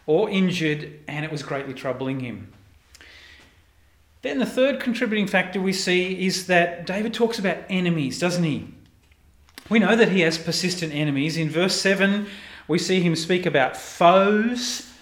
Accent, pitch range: Australian, 135-185 Hz